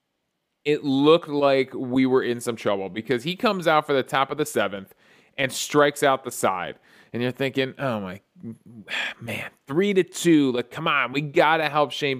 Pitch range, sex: 125-165 Hz, male